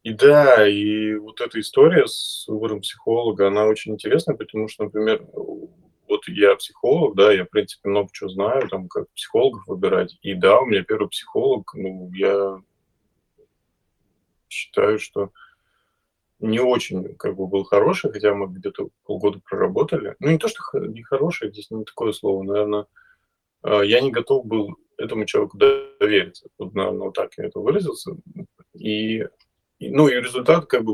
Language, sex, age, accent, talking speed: Russian, male, 20-39, native, 155 wpm